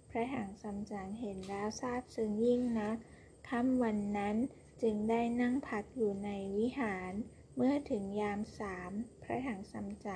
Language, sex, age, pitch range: Thai, female, 20-39, 205-235 Hz